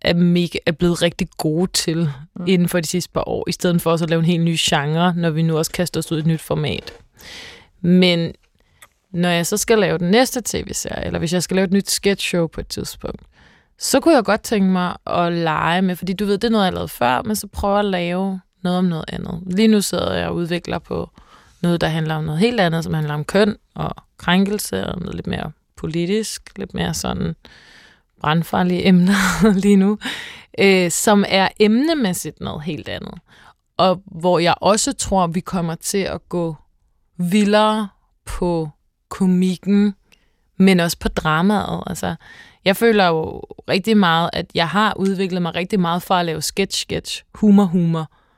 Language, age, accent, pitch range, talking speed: Danish, 20-39, native, 170-200 Hz, 190 wpm